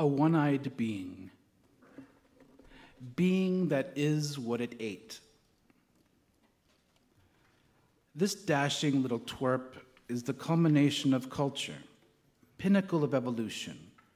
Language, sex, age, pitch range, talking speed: English, male, 50-69, 125-160 Hz, 90 wpm